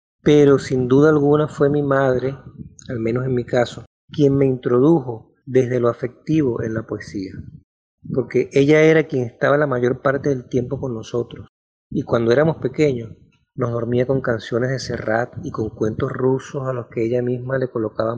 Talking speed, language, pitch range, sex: 180 wpm, Spanish, 115-135 Hz, male